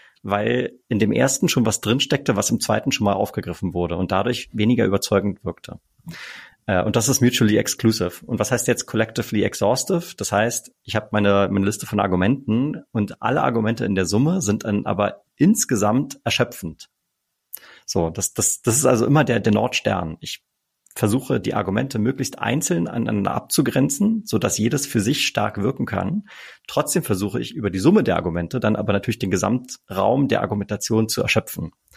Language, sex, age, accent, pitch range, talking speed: German, male, 30-49, German, 95-120 Hz, 175 wpm